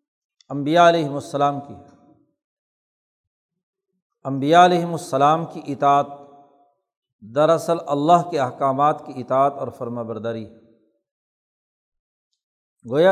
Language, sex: Urdu, male